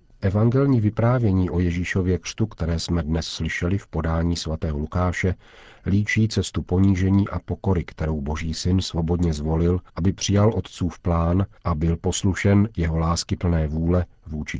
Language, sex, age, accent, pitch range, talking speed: Czech, male, 50-69, native, 85-100 Hz, 145 wpm